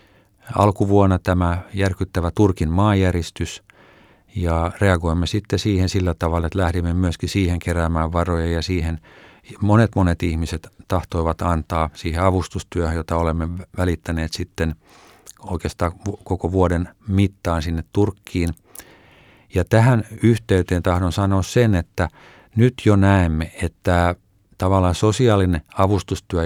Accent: native